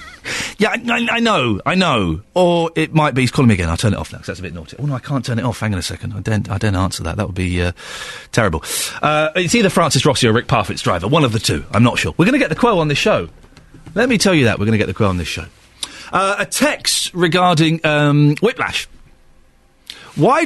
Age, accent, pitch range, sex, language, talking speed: 40-59, British, 115-185 Hz, male, English, 270 wpm